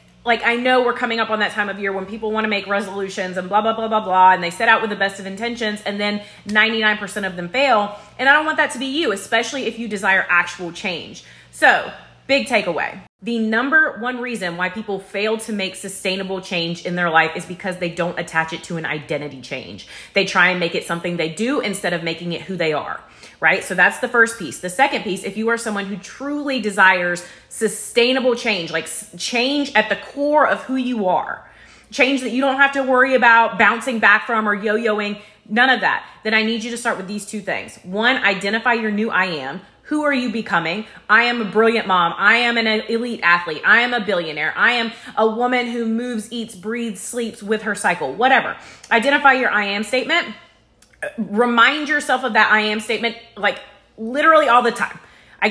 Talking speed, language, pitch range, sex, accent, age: 220 wpm, English, 190-245 Hz, female, American, 30-49